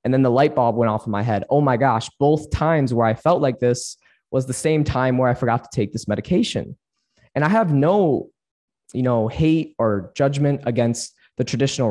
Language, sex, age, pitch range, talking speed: English, male, 20-39, 115-150 Hz, 215 wpm